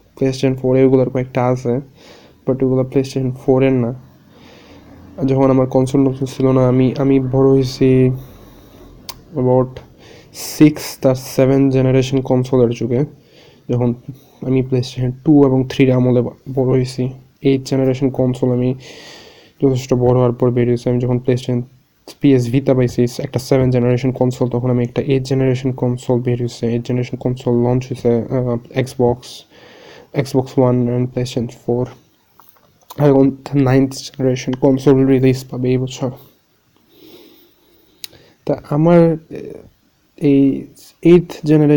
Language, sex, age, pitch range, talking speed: Bengali, male, 20-39, 125-135 Hz, 100 wpm